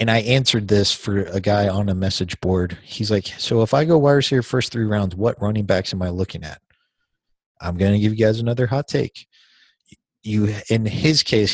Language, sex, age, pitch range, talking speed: English, male, 20-39, 95-110 Hz, 215 wpm